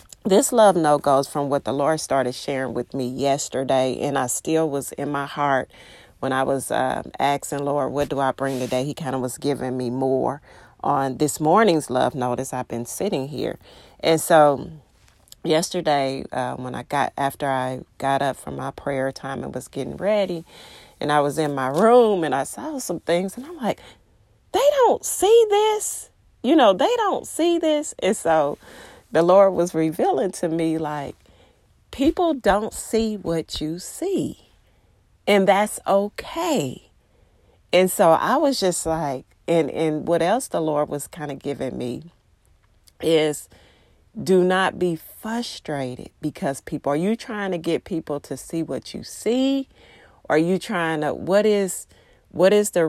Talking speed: 175 wpm